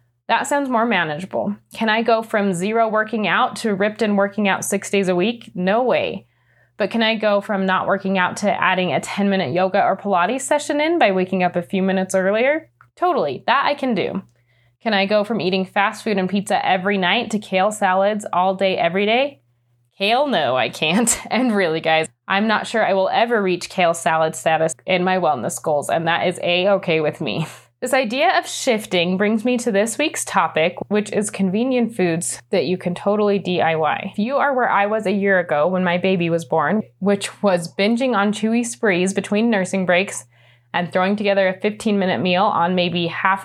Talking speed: 205 wpm